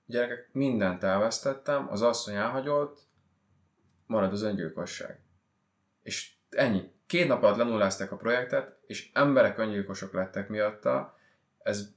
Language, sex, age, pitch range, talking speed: Hungarian, male, 20-39, 100-125 Hz, 115 wpm